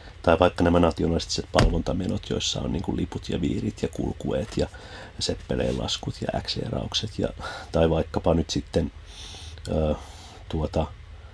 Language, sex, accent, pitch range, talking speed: Finnish, male, native, 80-100 Hz, 130 wpm